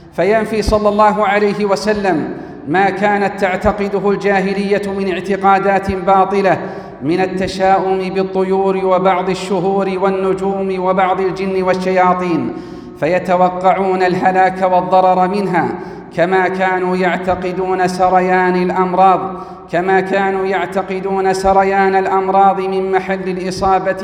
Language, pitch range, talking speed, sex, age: Arabic, 185-195 Hz, 85 wpm, male, 40-59